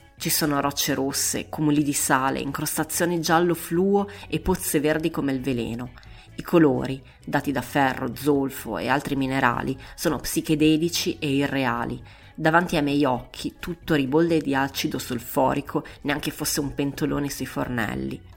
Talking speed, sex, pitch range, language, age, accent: 145 wpm, female, 130-155 Hz, Italian, 30-49, native